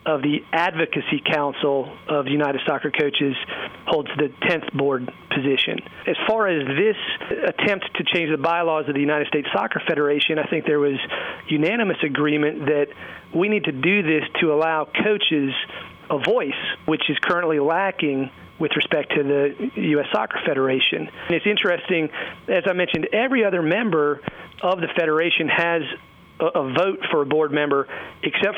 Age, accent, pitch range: 40-59, American, 150-175 Hz